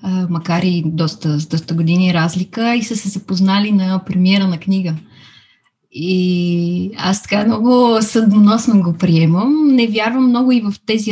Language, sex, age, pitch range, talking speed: Bulgarian, female, 20-39, 185-225 Hz, 145 wpm